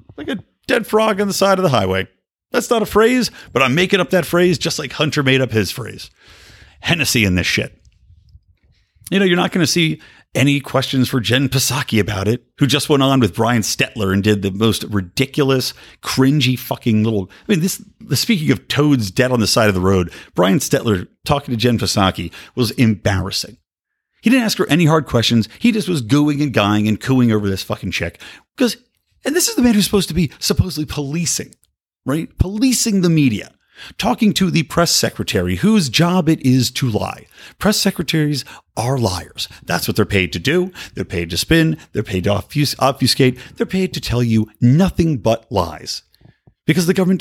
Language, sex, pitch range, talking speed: English, male, 110-175 Hz, 200 wpm